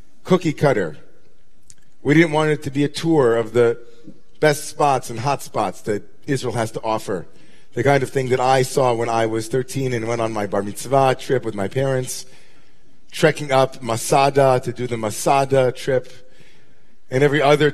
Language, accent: English, American